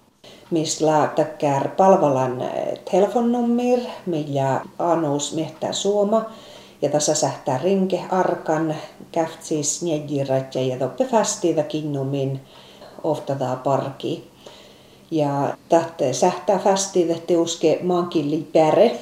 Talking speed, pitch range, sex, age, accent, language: 85 wpm, 145-185 Hz, female, 40-59, native, Finnish